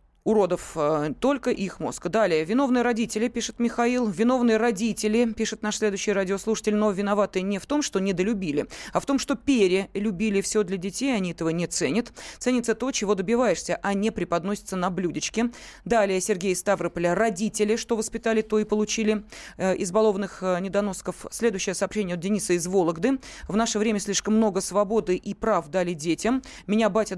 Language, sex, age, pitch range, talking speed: Russian, female, 20-39, 195-235 Hz, 160 wpm